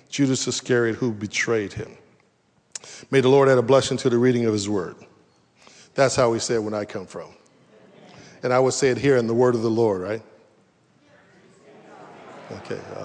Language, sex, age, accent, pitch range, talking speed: English, male, 50-69, American, 130-170 Hz, 185 wpm